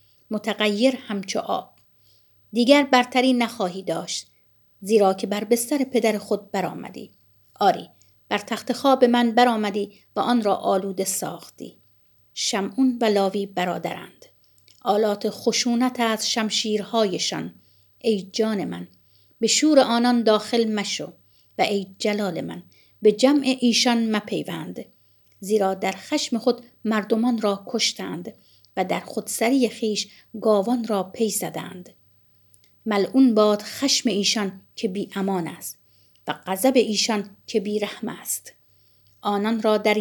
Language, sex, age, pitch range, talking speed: Persian, female, 50-69, 175-235 Hz, 125 wpm